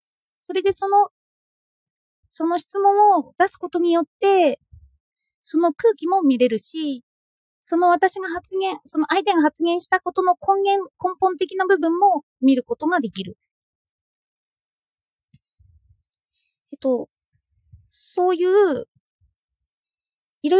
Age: 20-39